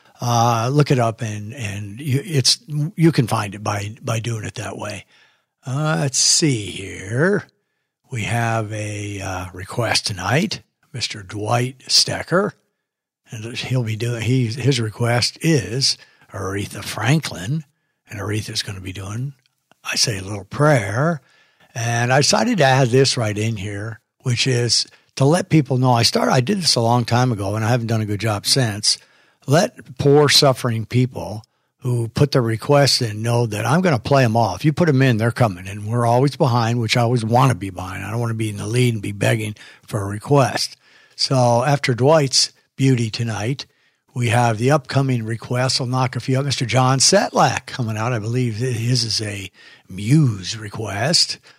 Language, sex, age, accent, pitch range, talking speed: English, male, 60-79, American, 110-135 Hz, 185 wpm